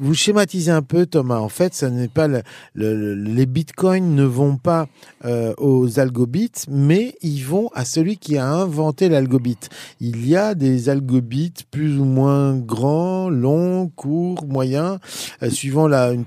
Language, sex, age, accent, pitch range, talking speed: French, male, 40-59, French, 125-165 Hz, 165 wpm